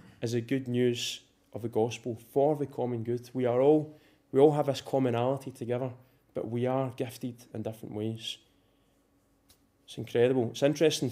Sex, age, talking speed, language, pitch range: male, 20-39, 165 wpm, English, 120-140 Hz